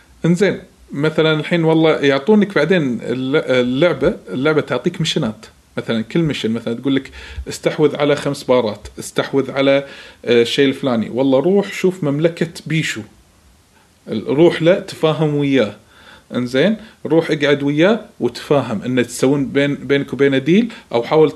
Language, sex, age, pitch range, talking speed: Arabic, male, 40-59, 130-180 Hz, 125 wpm